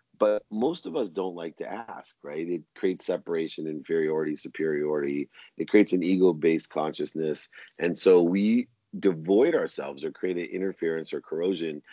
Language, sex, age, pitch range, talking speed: English, male, 40-59, 80-100 Hz, 150 wpm